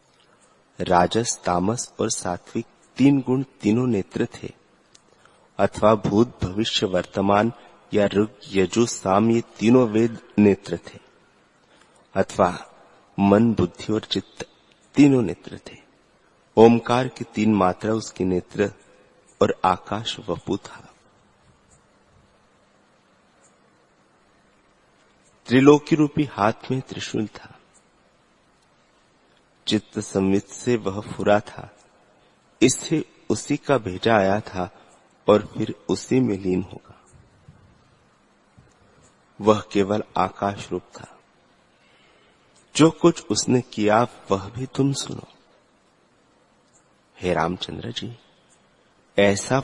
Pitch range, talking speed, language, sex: 100-125 Hz, 95 wpm, Hindi, male